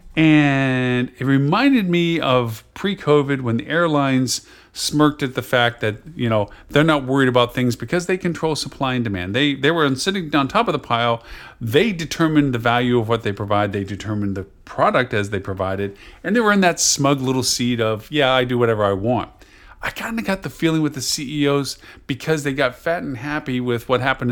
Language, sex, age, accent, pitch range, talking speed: English, male, 40-59, American, 115-145 Hz, 210 wpm